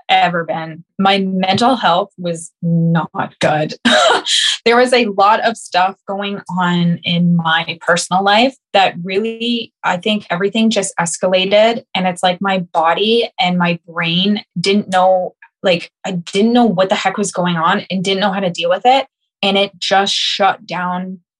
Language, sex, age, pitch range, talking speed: English, female, 20-39, 180-210 Hz, 170 wpm